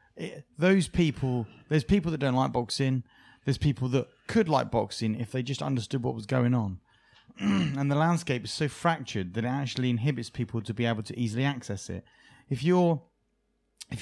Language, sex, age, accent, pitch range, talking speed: English, male, 30-49, British, 115-145 Hz, 190 wpm